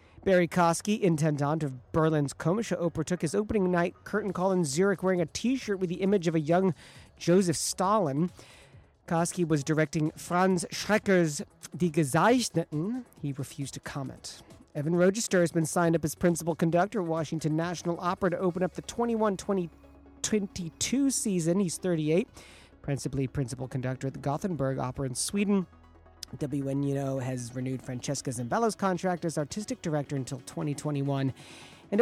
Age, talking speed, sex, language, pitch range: 40-59, 150 wpm, male, English, 150-195 Hz